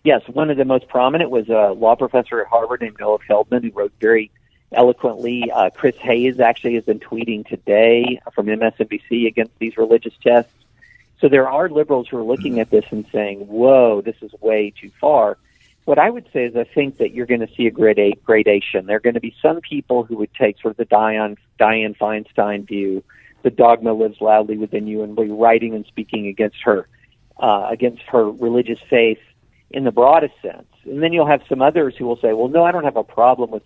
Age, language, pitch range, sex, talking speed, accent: 50-69, English, 110-125 Hz, male, 210 wpm, American